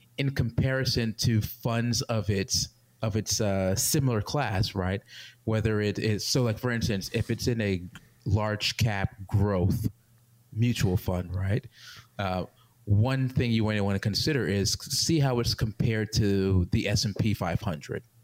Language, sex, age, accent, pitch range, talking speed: English, male, 30-49, American, 100-120 Hz, 150 wpm